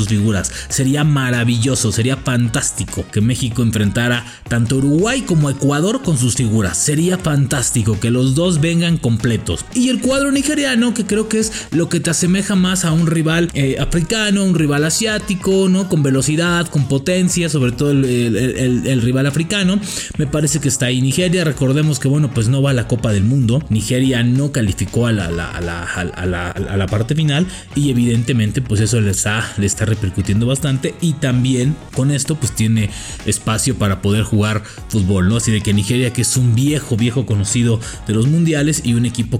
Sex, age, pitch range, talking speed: male, 30-49, 115-160 Hz, 180 wpm